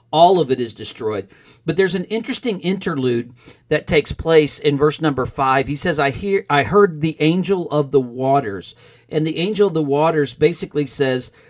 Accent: American